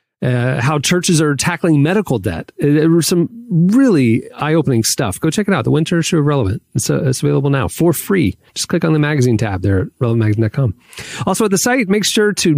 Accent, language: American, English